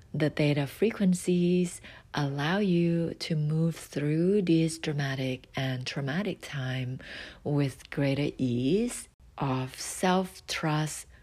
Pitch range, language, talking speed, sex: 135-175 Hz, English, 95 wpm, female